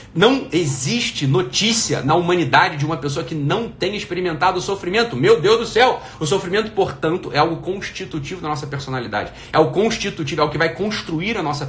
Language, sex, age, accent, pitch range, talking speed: Portuguese, male, 40-59, Brazilian, 130-165 Hz, 190 wpm